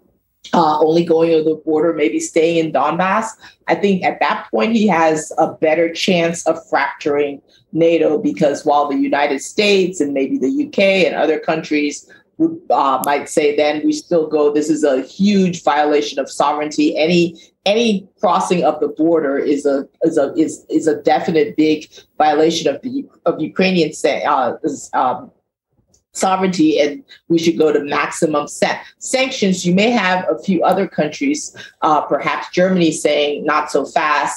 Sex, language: female, English